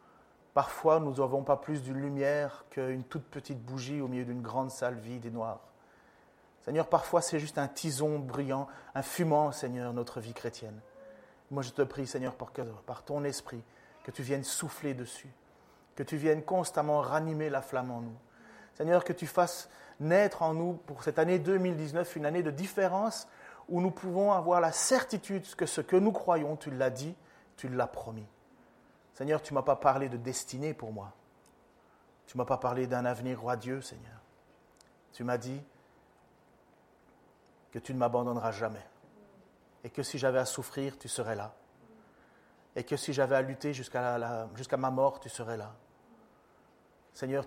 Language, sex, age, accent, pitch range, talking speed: French, male, 30-49, French, 125-155 Hz, 175 wpm